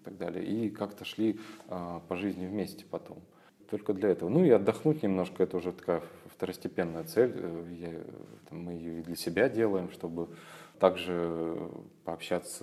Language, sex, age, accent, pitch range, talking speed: Russian, male, 20-39, native, 85-95 Hz, 145 wpm